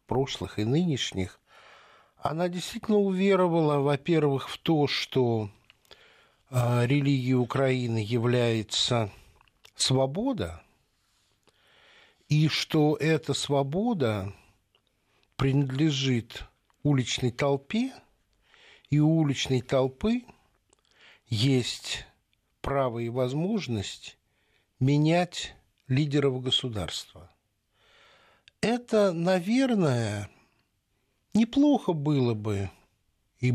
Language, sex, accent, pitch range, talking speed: Russian, male, native, 115-155 Hz, 70 wpm